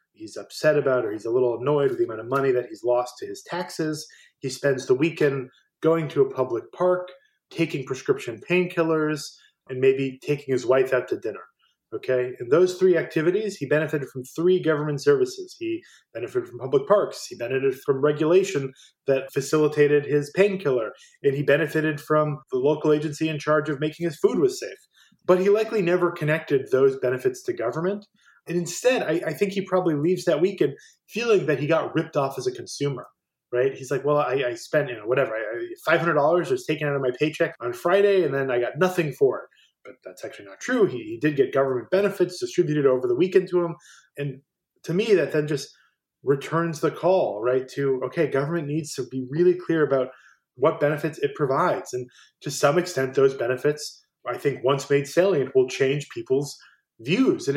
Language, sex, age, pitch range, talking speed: English, male, 20-39, 135-185 Hz, 195 wpm